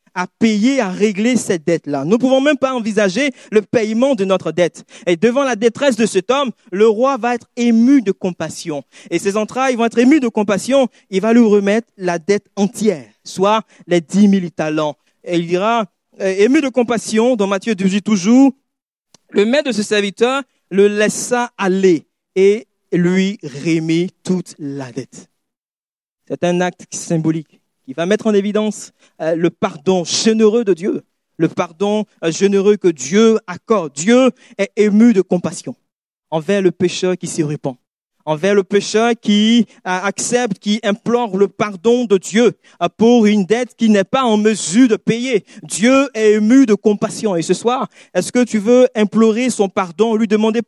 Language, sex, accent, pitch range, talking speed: French, male, French, 190-235 Hz, 170 wpm